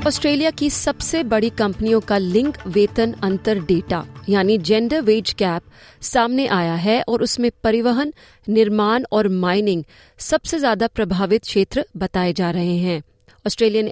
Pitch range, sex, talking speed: 195-245 Hz, female, 140 wpm